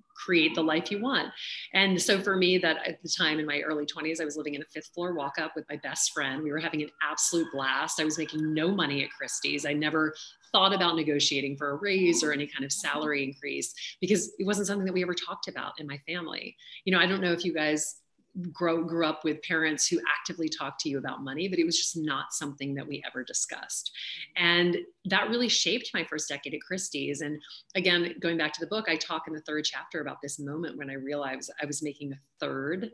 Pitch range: 145-175 Hz